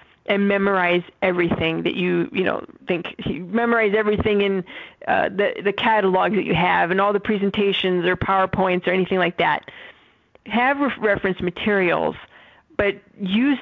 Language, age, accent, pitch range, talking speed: English, 40-59, American, 185-220 Hz, 150 wpm